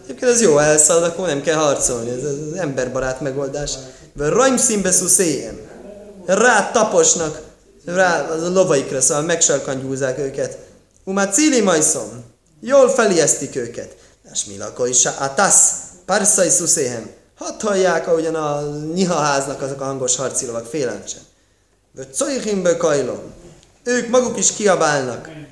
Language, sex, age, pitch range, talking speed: Hungarian, male, 20-39, 130-185 Hz, 130 wpm